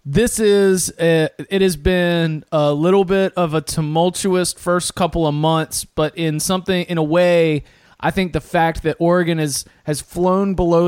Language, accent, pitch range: English, American, 145-170 Hz